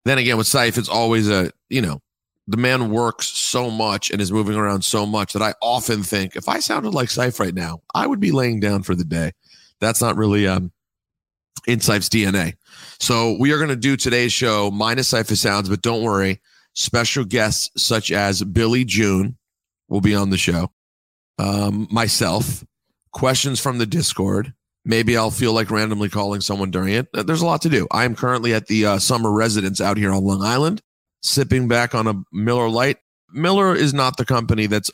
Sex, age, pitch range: male, 40-59, 100-120 Hz